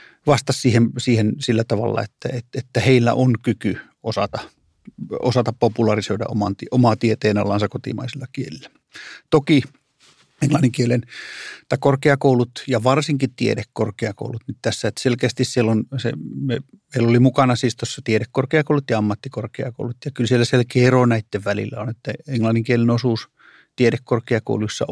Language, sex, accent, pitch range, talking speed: Finnish, male, native, 110-130 Hz, 120 wpm